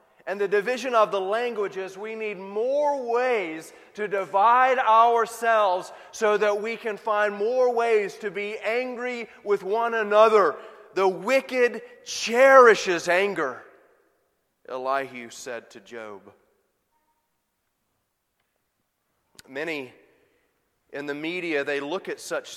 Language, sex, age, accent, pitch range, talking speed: English, male, 30-49, American, 165-240 Hz, 110 wpm